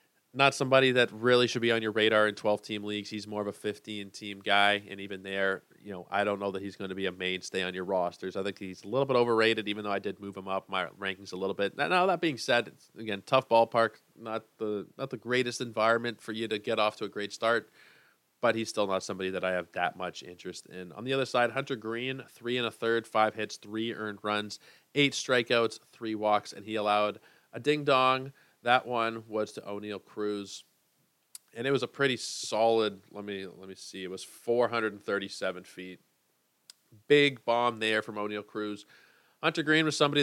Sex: male